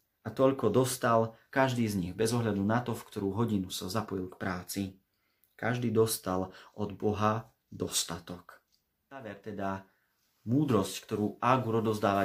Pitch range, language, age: 95-115 Hz, Slovak, 30-49